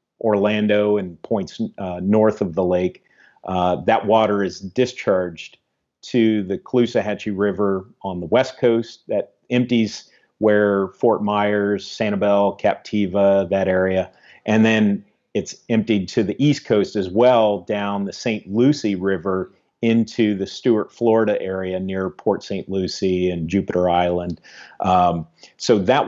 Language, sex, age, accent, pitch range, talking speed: English, male, 40-59, American, 95-115 Hz, 140 wpm